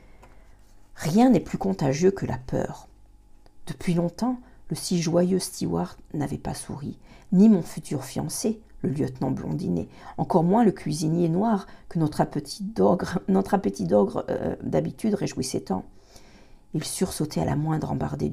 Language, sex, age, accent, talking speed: French, female, 50-69, French, 145 wpm